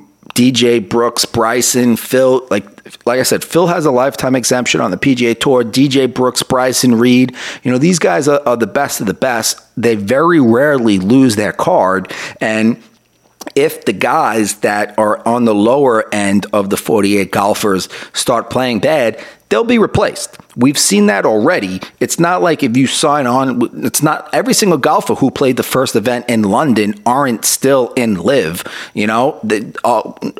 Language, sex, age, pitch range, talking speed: English, male, 30-49, 115-140 Hz, 175 wpm